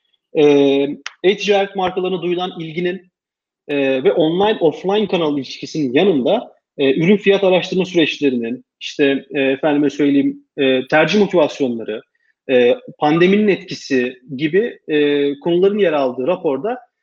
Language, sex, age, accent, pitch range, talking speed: Turkish, male, 40-59, native, 140-190 Hz, 115 wpm